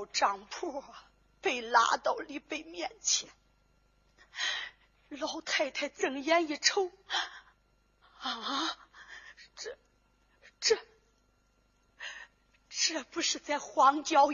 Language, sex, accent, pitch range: Chinese, female, native, 250-380 Hz